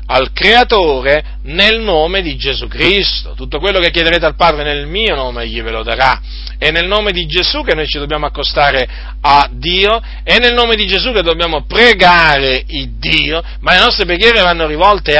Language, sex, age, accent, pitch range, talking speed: Italian, male, 40-59, native, 145-210 Hz, 190 wpm